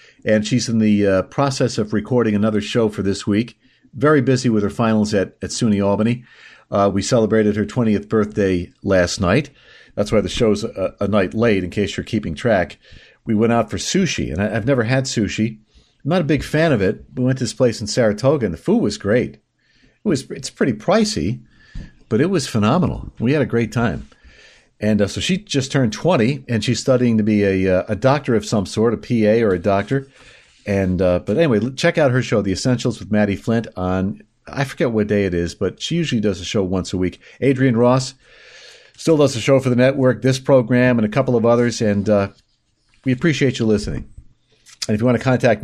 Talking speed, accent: 220 wpm, American